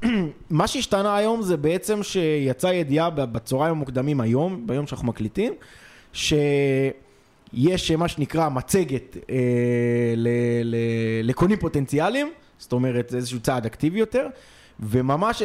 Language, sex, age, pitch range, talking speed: Hebrew, male, 20-39, 125-170 Hz, 115 wpm